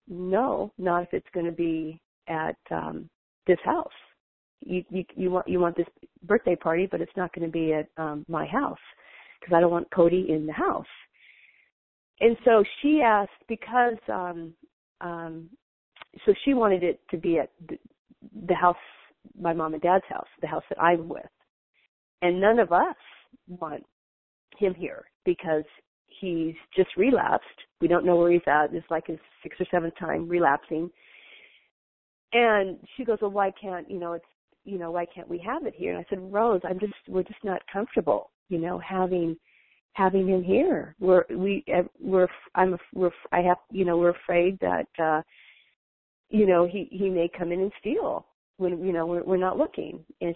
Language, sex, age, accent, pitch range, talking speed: English, female, 40-59, American, 170-205 Hz, 180 wpm